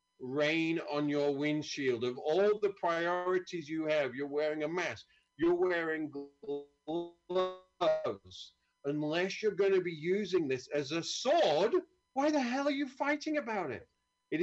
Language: English